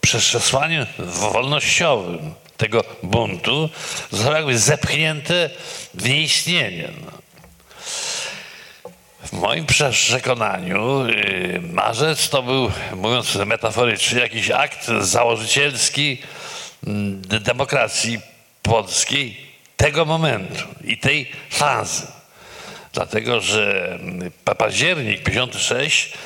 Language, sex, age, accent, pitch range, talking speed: Polish, male, 50-69, native, 110-150 Hz, 75 wpm